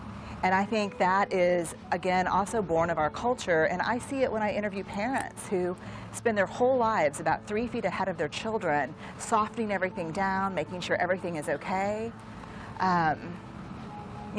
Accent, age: American, 40-59